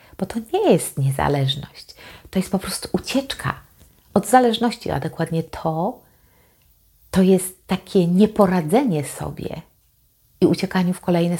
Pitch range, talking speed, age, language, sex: 165-210 Hz, 125 wpm, 40-59, Polish, female